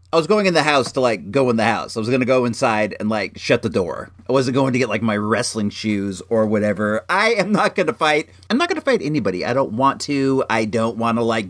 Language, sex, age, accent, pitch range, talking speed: English, male, 40-59, American, 120-190 Hz, 285 wpm